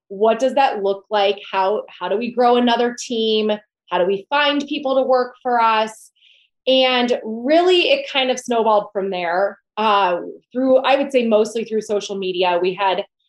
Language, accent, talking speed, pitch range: English, American, 180 wpm, 205-275 Hz